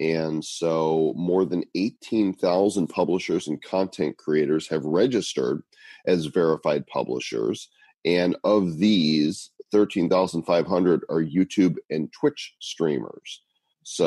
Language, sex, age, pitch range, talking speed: English, male, 40-59, 80-105 Hz, 100 wpm